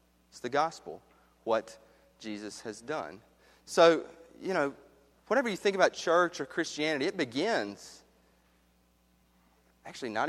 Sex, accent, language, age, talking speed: male, American, English, 30-49, 120 wpm